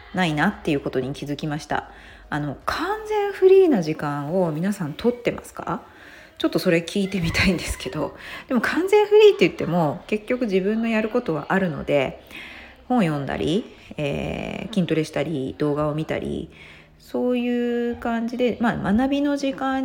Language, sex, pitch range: Japanese, female, 145-235 Hz